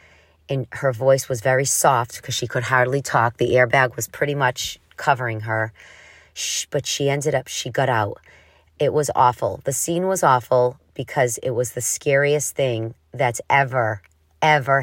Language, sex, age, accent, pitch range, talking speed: English, female, 40-59, American, 110-135 Hz, 165 wpm